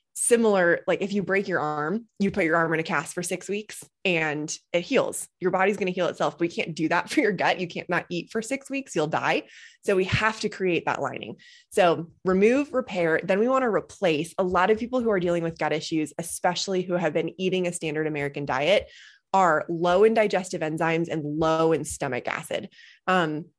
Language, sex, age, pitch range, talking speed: English, female, 20-39, 160-195 Hz, 225 wpm